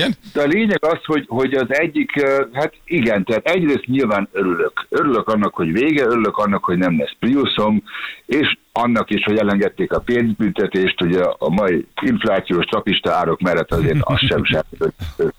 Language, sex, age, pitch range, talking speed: Hungarian, male, 60-79, 90-145 Hz, 170 wpm